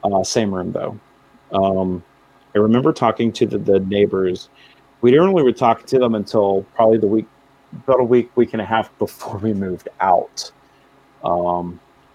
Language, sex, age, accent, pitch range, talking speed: English, male, 40-59, American, 105-135 Hz, 175 wpm